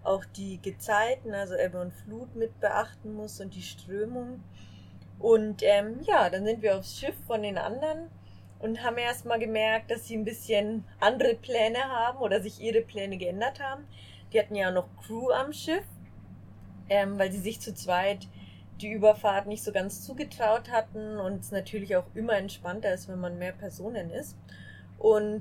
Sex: female